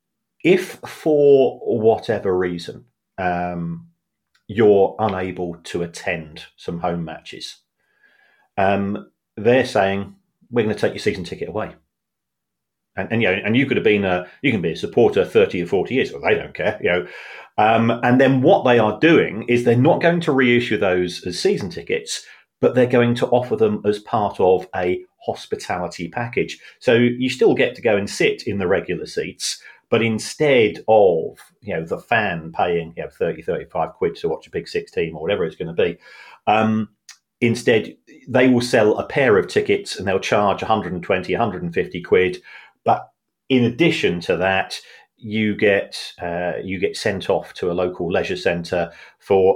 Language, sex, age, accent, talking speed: English, male, 40-59, British, 180 wpm